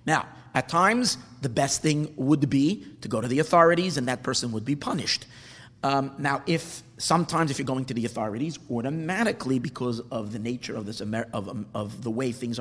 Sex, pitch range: male, 125-165 Hz